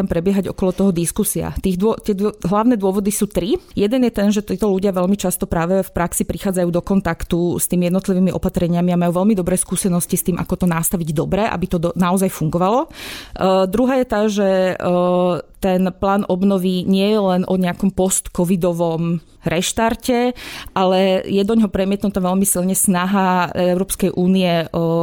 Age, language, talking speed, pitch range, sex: 20-39, Slovak, 170 wpm, 175-200 Hz, female